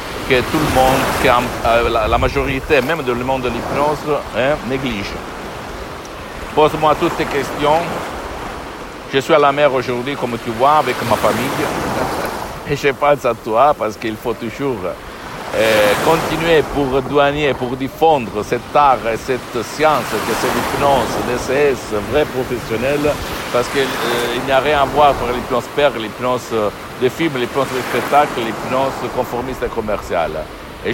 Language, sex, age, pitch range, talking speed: Italian, male, 60-79, 120-140 Hz, 150 wpm